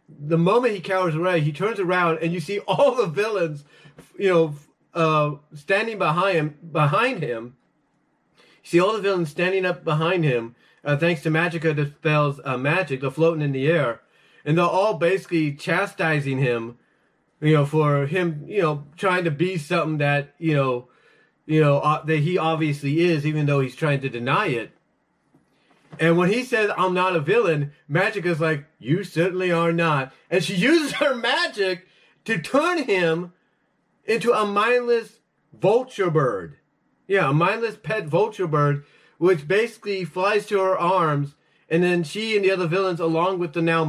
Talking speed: 175 wpm